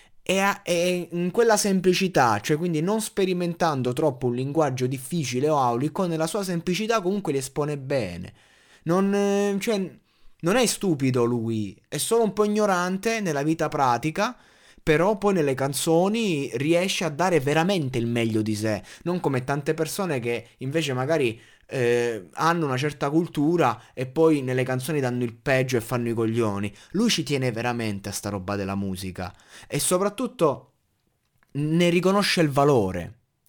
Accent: native